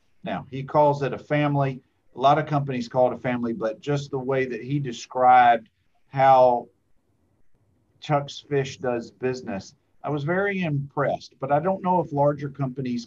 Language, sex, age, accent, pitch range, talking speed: English, male, 40-59, American, 120-145 Hz, 170 wpm